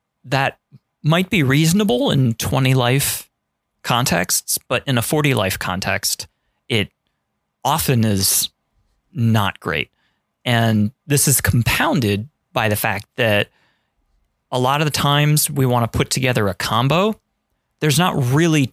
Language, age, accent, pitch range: English, 30-49, American, 105-135 Hz